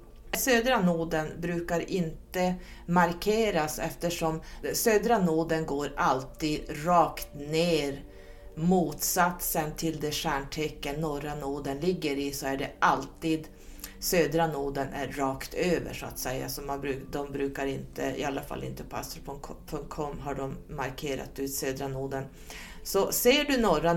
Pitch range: 135-170 Hz